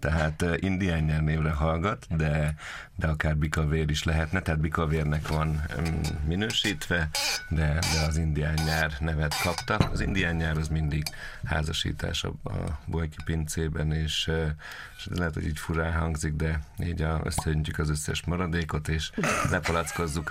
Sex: male